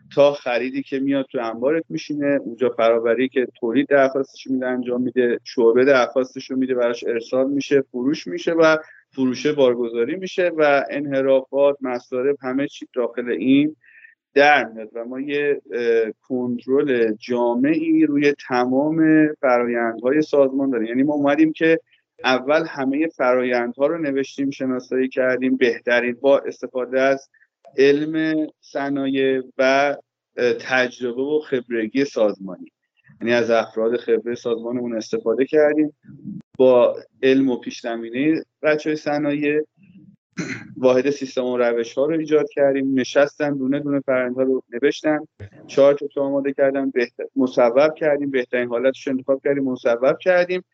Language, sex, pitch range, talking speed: Persian, male, 125-150 Hz, 125 wpm